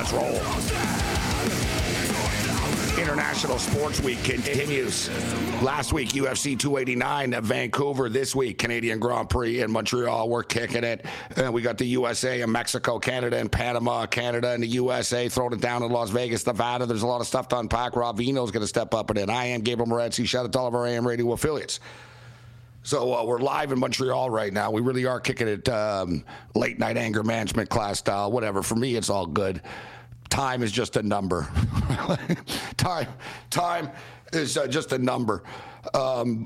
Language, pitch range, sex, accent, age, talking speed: English, 110-125 Hz, male, American, 50-69, 185 wpm